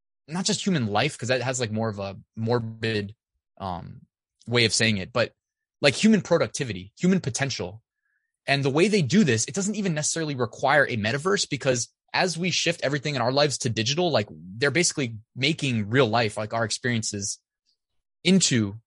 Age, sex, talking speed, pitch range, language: 20-39, male, 180 wpm, 110-140 Hz, English